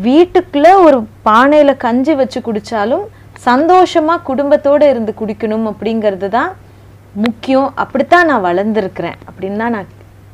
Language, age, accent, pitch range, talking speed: Tamil, 30-49, native, 190-265 Hz, 110 wpm